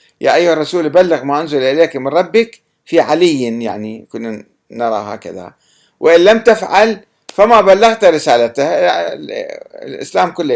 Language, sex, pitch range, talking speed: Arabic, male, 125-185 Hz, 130 wpm